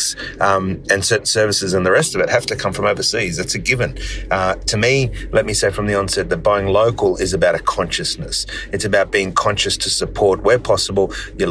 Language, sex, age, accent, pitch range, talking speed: English, male, 30-49, Australian, 95-110 Hz, 220 wpm